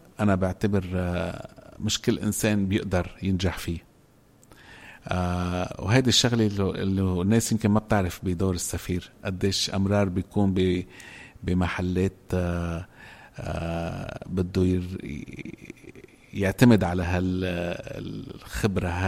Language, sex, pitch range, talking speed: Arabic, male, 95-105 Hz, 80 wpm